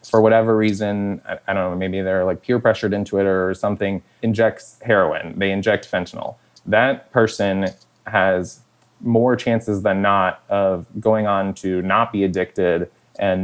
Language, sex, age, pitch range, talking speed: English, male, 20-39, 95-105 Hz, 155 wpm